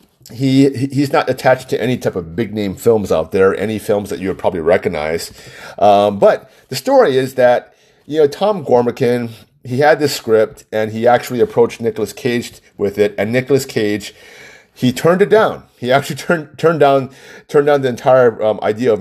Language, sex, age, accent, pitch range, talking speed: English, male, 30-49, American, 110-145 Hz, 195 wpm